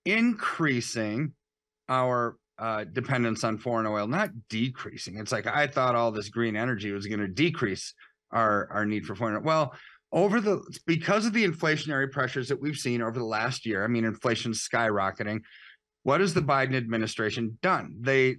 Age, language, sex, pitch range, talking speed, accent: 30-49, English, male, 115-155 Hz, 165 wpm, American